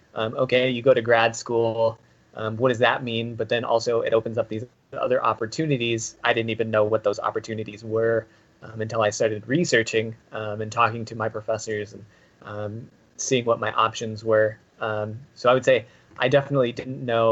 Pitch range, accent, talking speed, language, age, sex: 110-120 Hz, American, 195 wpm, English, 20-39, male